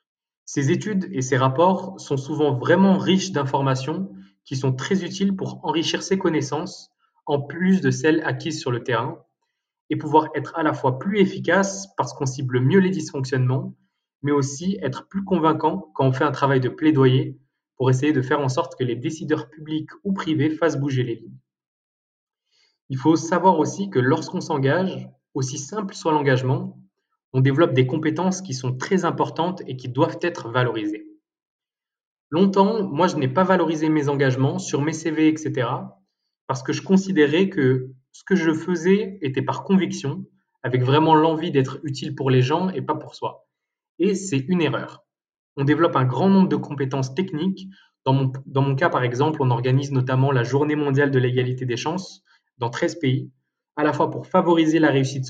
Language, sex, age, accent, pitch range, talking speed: French, male, 20-39, French, 135-175 Hz, 180 wpm